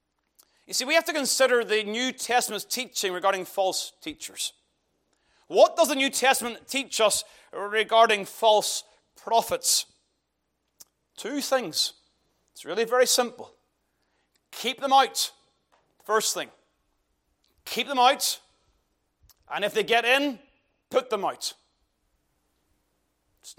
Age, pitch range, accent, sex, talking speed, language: 30-49, 195-260 Hz, British, male, 115 wpm, English